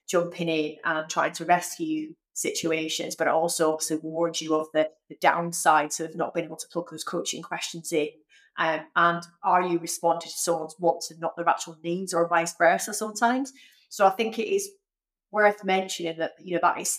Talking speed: 200 wpm